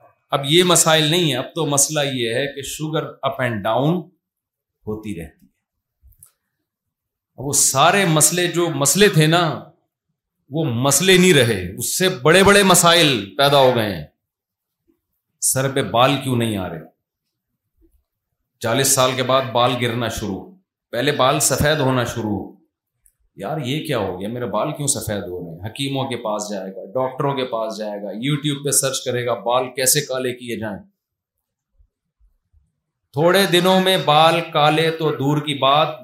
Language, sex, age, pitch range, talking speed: Urdu, male, 40-59, 120-170 Hz, 160 wpm